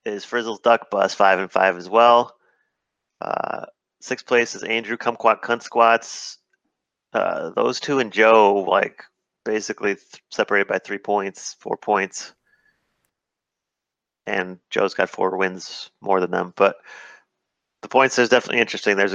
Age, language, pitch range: 30-49, English, 100-120 Hz